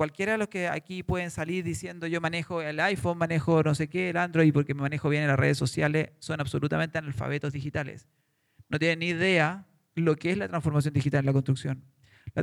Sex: male